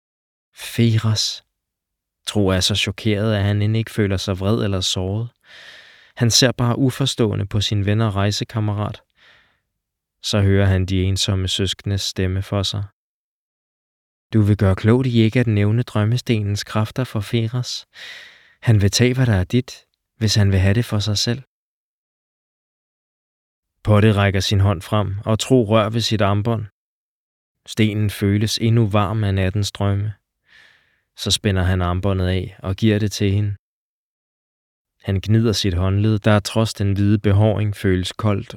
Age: 20-39